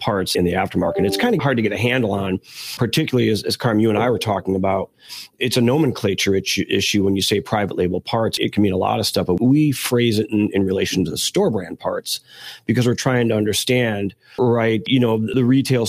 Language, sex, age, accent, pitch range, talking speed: English, male, 40-59, American, 100-120 Hz, 235 wpm